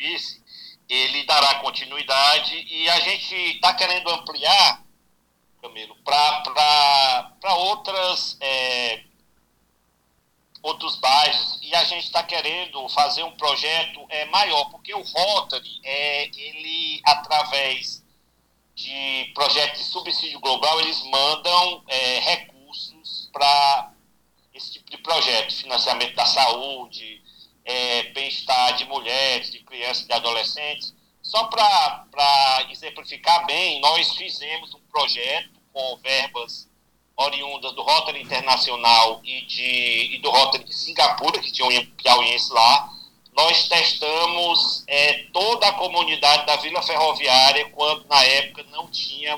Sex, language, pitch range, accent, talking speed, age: male, Portuguese, 130-165 Hz, Brazilian, 115 wpm, 50-69